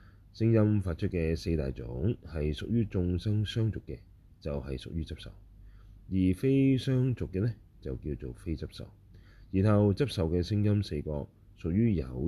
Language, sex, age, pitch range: Chinese, male, 30-49, 80-105 Hz